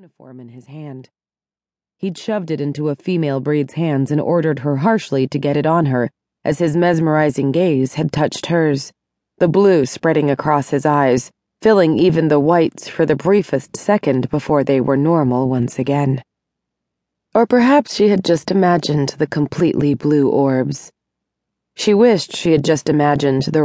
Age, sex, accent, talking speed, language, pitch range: 30-49, female, American, 165 wpm, English, 140-175 Hz